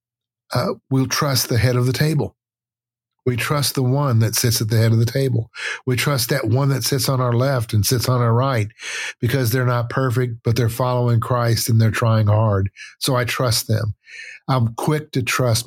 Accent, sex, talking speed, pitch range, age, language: American, male, 205 wpm, 115-130 Hz, 50-69, English